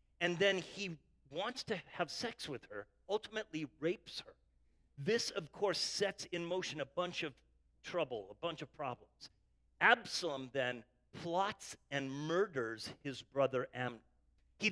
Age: 50-69